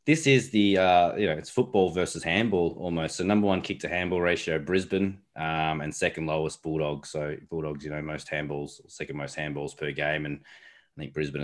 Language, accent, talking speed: English, Australian, 205 wpm